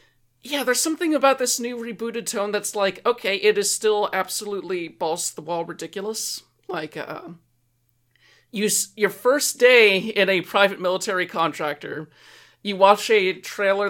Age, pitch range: 40-59, 165-210 Hz